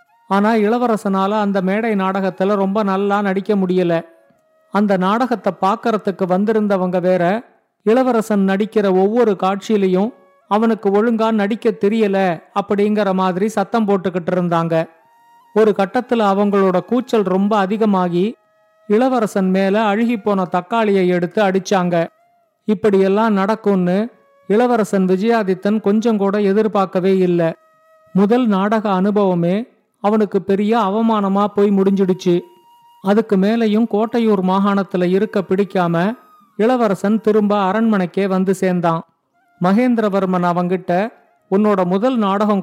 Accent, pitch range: native, 190-220 Hz